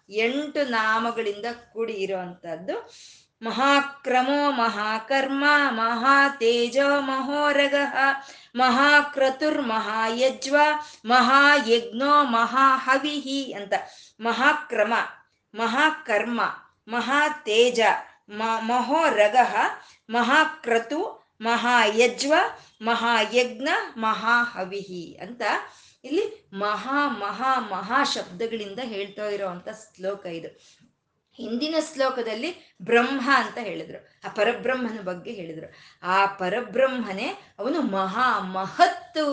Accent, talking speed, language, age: native, 70 wpm, Kannada, 20-39